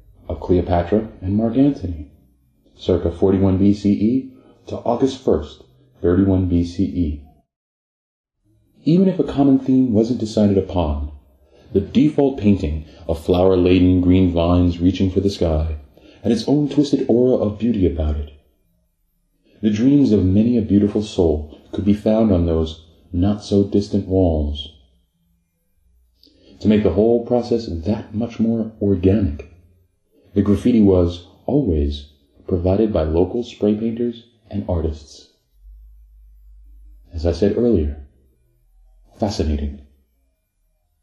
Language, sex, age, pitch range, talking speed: English, male, 30-49, 80-110 Hz, 115 wpm